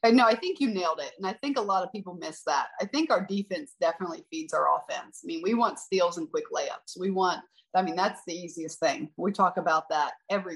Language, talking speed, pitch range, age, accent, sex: English, 255 wpm, 170-220 Hz, 30-49, American, female